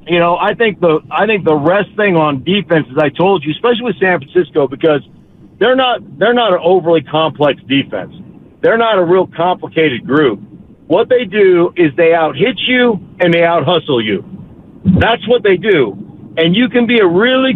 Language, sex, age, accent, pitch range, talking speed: English, male, 50-69, American, 155-190 Hz, 200 wpm